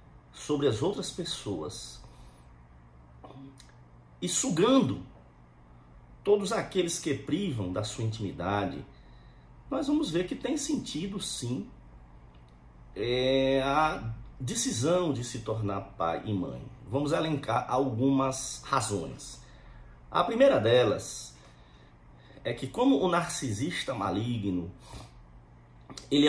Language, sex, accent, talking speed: Portuguese, male, Brazilian, 100 wpm